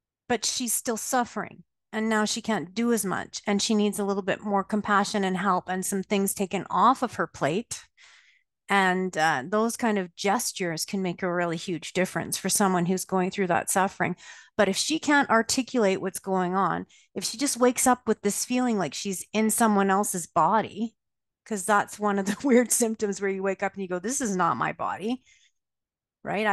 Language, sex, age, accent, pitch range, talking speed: English, female, 40-59, American, 185-225 Hz, 205 wpm